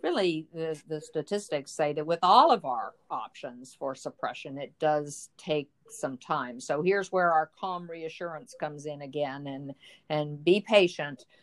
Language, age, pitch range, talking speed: English, 50-69, 150-180 Hz, 165 wpm